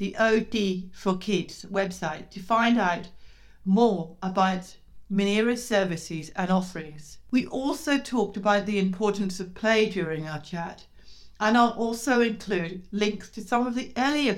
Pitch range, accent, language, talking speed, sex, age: 180-220 Hz, British, English, 145 wpm, female, 60-79